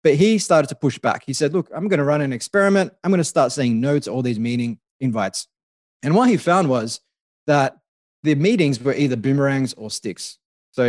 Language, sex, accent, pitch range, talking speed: English, male, Australian, 120-150 Hz, 220 wpm